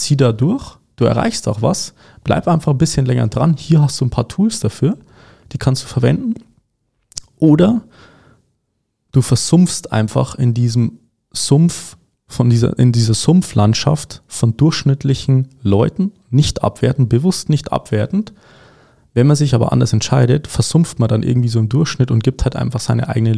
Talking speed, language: 160 wpm, German